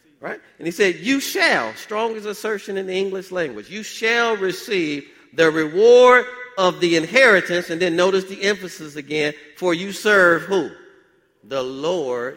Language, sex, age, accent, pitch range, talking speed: English, male, 50-69, American, 130-205 Hz, 150 wpm